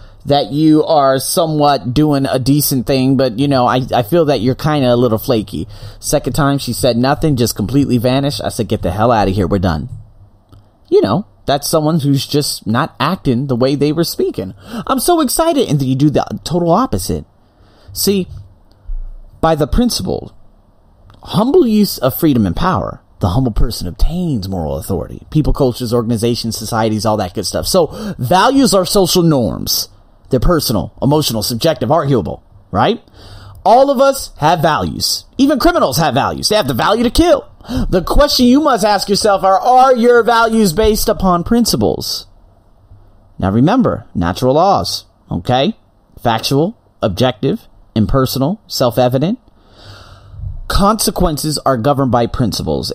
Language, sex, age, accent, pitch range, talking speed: English, male, 30-49, American, 105-160 Hz, 155 wpm